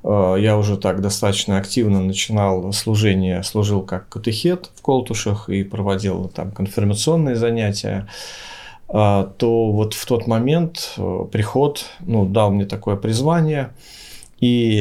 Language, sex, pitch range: Finnish, male, 100-120 Hz